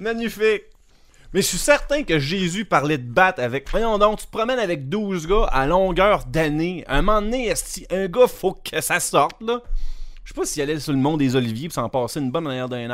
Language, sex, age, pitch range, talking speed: French, male, 30-49, 140-205 Hz, 230 wpm